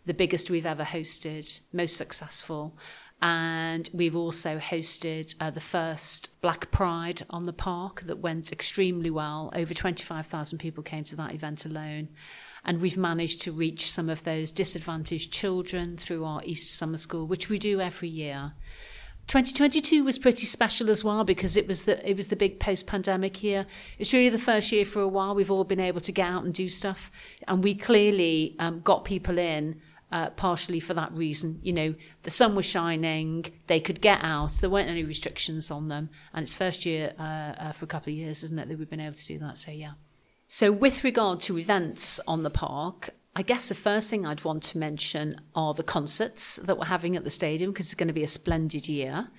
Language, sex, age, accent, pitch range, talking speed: English, female, 40-59, British, 155-190 Hz, 205 wpm